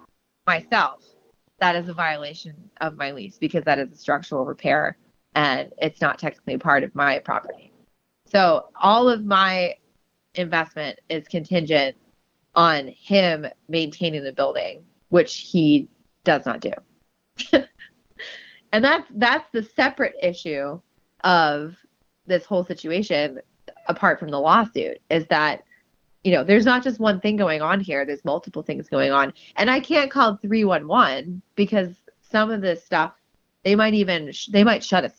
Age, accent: 20-39, American